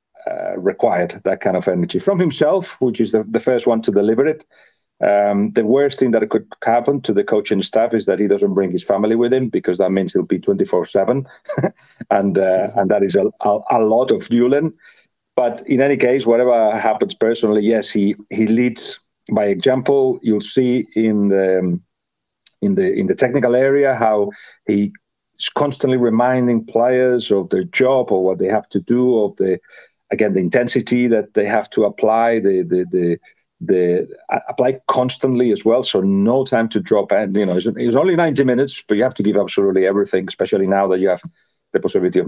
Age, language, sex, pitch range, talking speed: 40-59, English, male, 100-135 Hz, 200 wpm